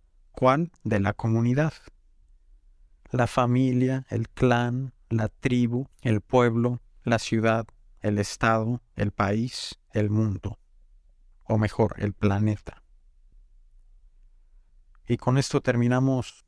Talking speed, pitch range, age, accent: 100 wpm, 90-120 Hz, 50-69, Mexican